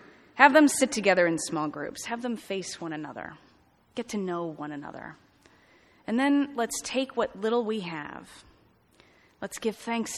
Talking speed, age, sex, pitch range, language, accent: 165 wpm, 30-49, female, 175-235 Hz, English, American